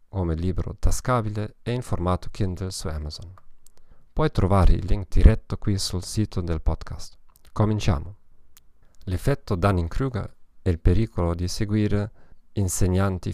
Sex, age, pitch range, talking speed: male, 40-59, 90-110 Hz, 130 wpm